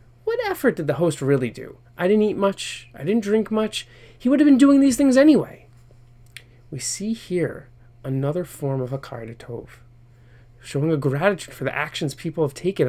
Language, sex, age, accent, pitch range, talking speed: English, male, 30-49, American, 120-165 Hz, 180 wpm